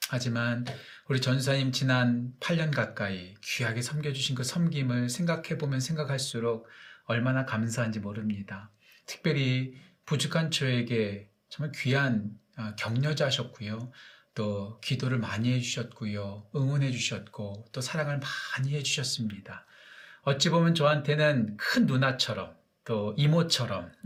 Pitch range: 110-145 Hz